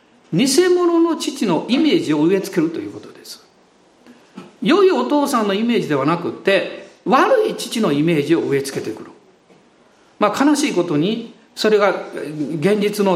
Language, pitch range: Japanese, 185-300 Hz